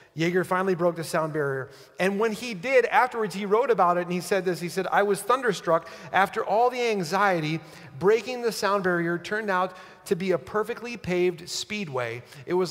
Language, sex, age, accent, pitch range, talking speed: English, male, 30-49, American, 175-225 Hz, 200 wpm